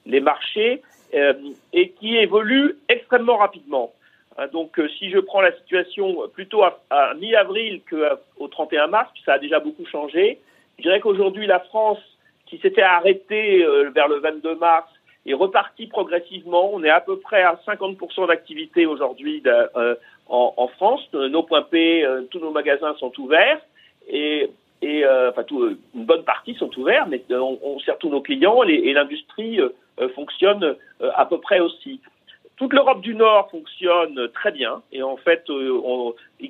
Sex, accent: male, French